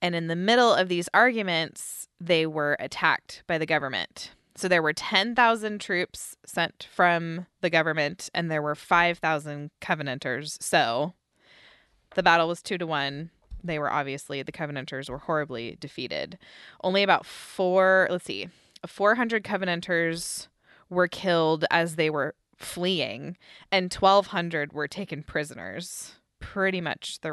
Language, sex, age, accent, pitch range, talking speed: English, female, 20-39, American, 160-195 Hz, 140 wpm